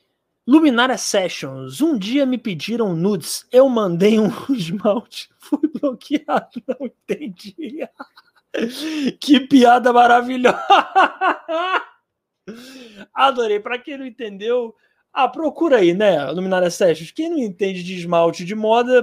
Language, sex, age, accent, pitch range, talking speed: Portuguese, male, 20-39, Brazilian, 180-260 Hz, 115 wpm